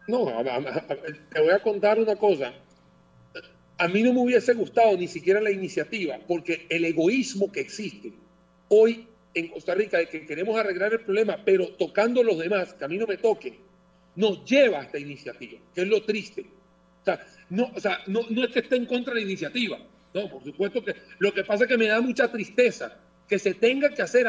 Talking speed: 215 wpm